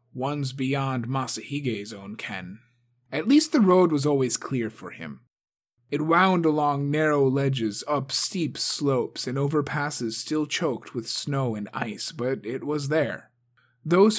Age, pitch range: 30-49, 120-155 Hz